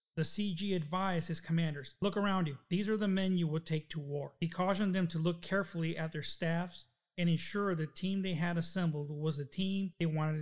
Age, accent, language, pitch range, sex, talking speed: 40-59, American, English, 160-195 Hz, male, 220 wpm